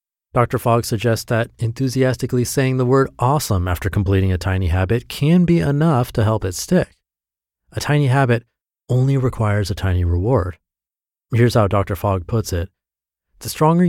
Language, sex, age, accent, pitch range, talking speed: English, male, 30-49, American, 95-125 Hz, 160 wpm